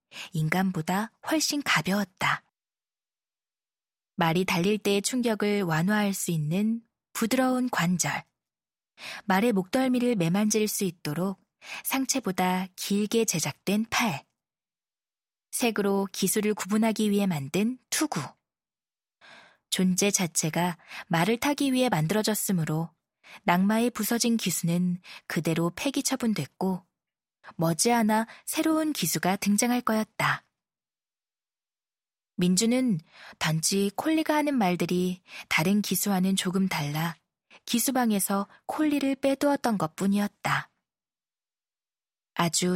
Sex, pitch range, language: female, 175-230 Hz, Korean